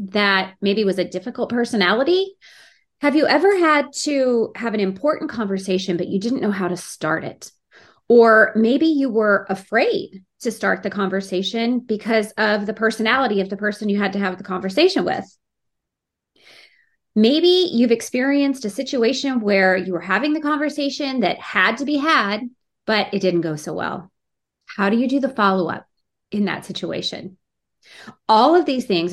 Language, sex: English, female